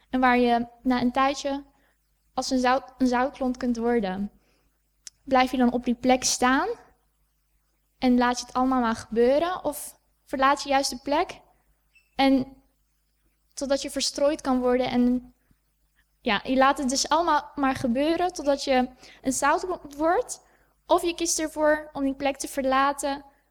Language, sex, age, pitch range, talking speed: Dutch, female, 10-29, 245-275 Hz, 155 wpm